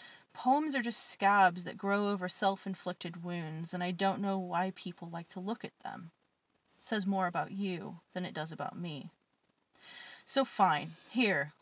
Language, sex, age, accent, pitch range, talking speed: English, female, 20-39, American, 180-235 Hz, 170 wpm